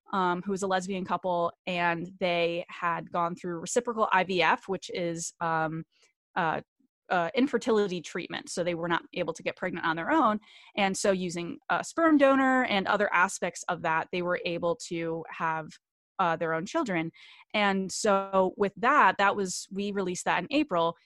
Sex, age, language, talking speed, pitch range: female, 20-39, English, 175 wpm, 170-205 Hz